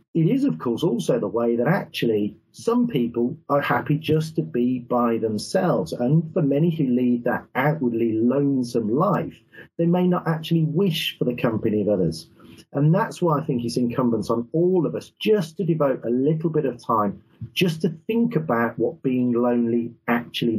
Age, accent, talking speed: 40-59, British, 185 wpm